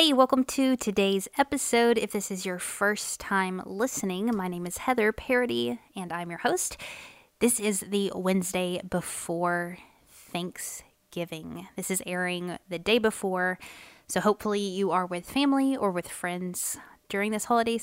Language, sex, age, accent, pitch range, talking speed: English, female, 20-39, American, 175-210 Hz, 150 wpm